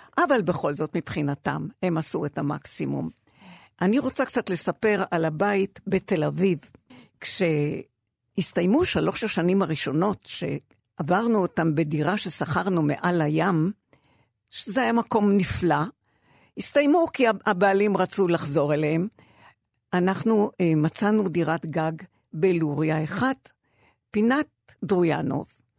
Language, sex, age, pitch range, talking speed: Hebrew, female, 50-69, 160-220 Hz, 100 wpm